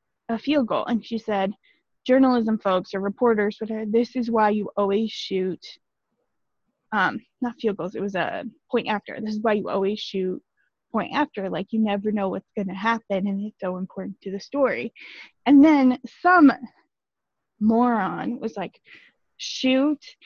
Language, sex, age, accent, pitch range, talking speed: English, female, 20-39, American, 215-260 Hz, 165 wpm